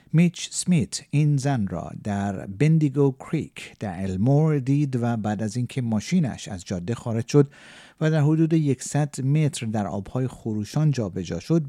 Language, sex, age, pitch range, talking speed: Persian, male, 50-69, 105-145 Hz, 155 wpm